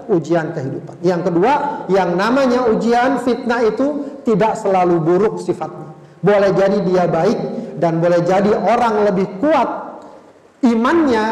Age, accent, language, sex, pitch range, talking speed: 40-59, native, Indonesian, male, 165-215 Hz, 125 wpm